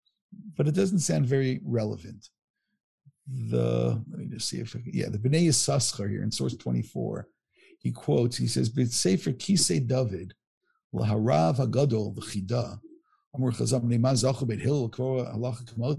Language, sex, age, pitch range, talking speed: English, male, 60-79, 110-150 Hz, 145 wpm